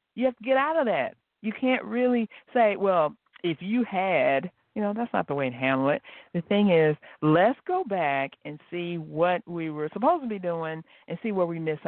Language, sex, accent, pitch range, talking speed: English, female, American, 150-205 Hz, 220 wpm